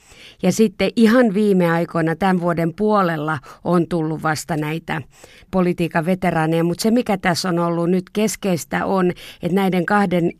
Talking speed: 150 wpm